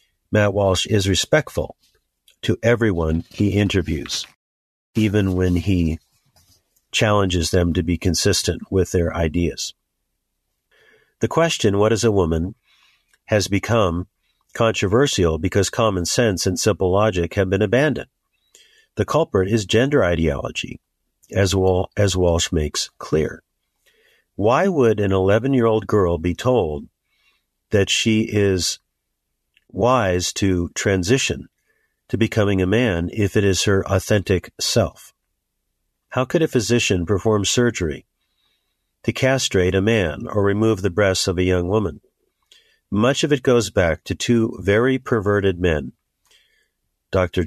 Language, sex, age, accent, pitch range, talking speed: English, male, 50-69, American, 85-110 Hz, 125 wpm